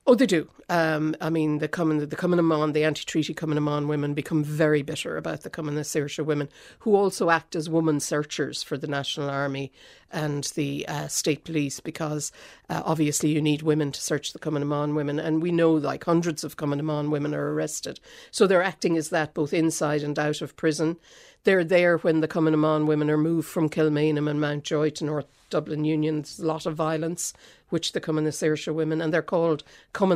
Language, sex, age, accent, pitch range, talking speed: English, female, 60-79, Irish, 150-170 Hz, 205 wpm